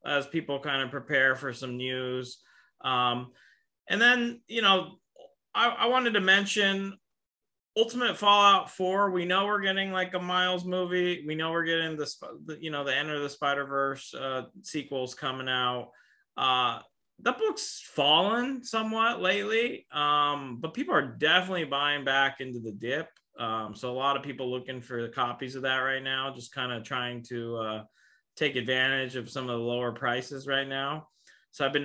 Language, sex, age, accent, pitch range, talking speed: English, male, 30-49, American, 125-160 Hz, 175 wpm